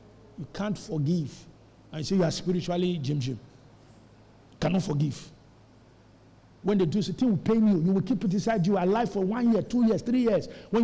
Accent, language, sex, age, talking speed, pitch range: Nigerian, English, male, 50-69, 205 wpm, 160-240 Hz